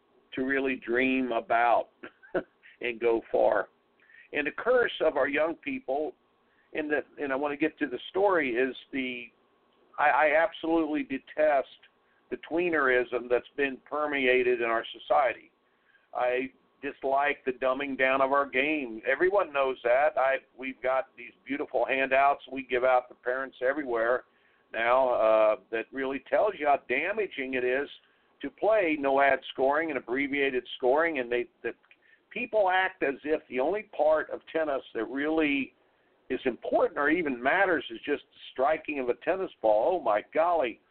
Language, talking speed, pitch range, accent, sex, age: English, 160 wpm, 130-160 Hz, American, male, 50-69